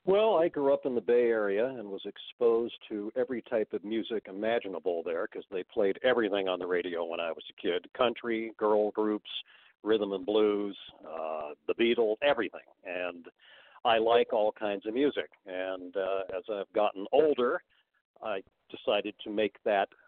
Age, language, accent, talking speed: 50-69, English, American, 175 wpm